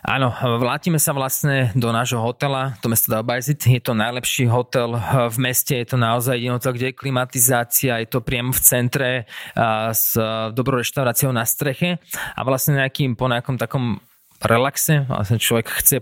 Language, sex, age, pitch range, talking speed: Slovak, male, 20-39, 120-135 Hz, 165 wpm